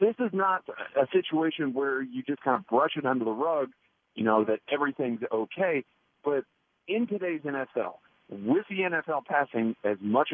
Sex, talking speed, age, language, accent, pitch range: male, 175 wpm, 50-69, English, American, 115-160 Hz